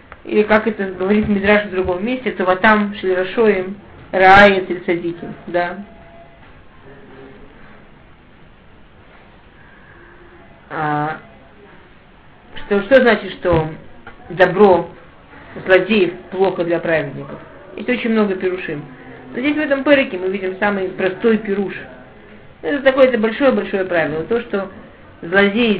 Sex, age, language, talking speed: female, 50-69, Russian, 105 wpm